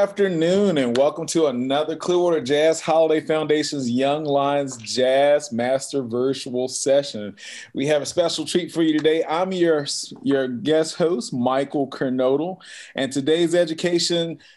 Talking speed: 140 wpm